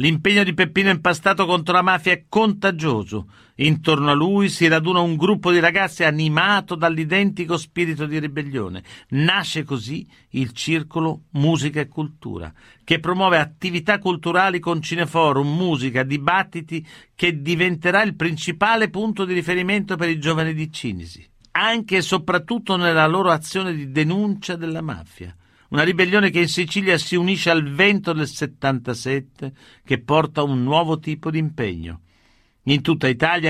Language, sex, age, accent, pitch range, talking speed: Italian, male, 50-69, native, 140-180 Hz, 145 wpm